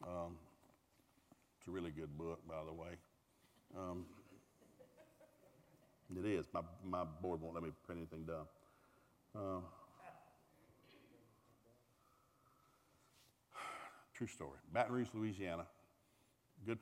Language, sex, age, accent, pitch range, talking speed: English, male, 60-79, American, 85-110 Hz, 100 wpm